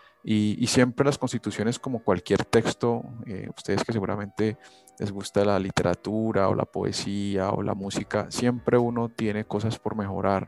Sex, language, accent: male, Spanish, Colombian